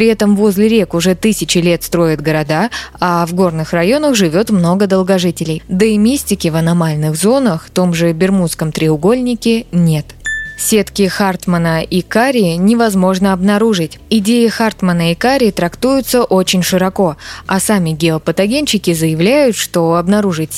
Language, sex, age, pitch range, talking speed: Russian, female, 20-39, 170-225 Hz, 135 wpm